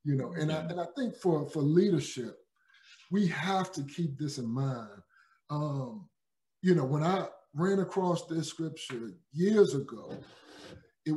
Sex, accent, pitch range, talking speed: male, American, 150-195 Hz, 155 wpm